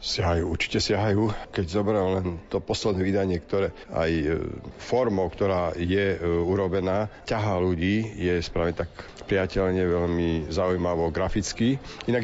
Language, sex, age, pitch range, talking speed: Slovak, male, 50-69, 95-115 Hz, 125 wpm